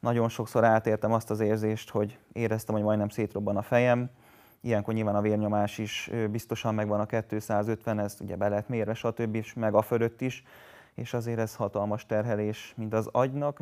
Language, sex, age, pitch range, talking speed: Hungarian, male, 20-39, 110-120 Hz, 180 wpm